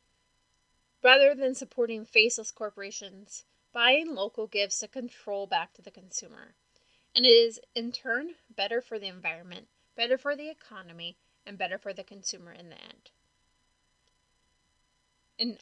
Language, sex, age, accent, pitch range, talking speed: English, female, 30-49, American, 195-255 Hz, 140 wpm